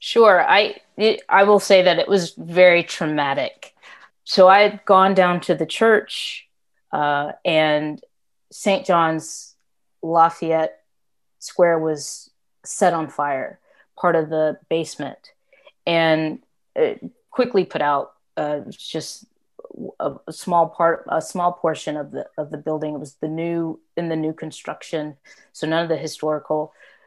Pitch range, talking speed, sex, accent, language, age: 160-200 Hz, 145 wpm, female, American, English, 30-49